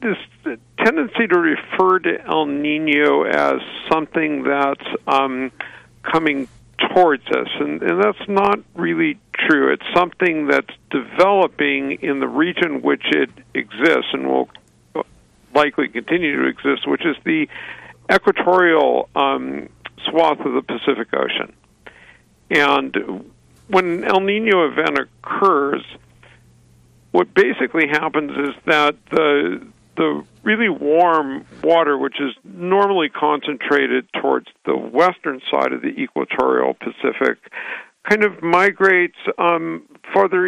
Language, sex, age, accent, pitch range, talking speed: English, male, 50-69, American, 120-180 Hz, 120 wpm